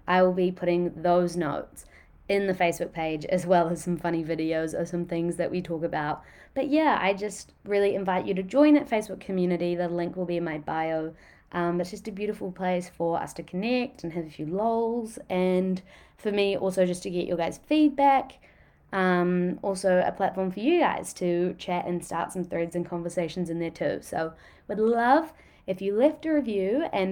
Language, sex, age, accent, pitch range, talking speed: English, female, 20-39, Australian, 165-195 Hz, 210 wpm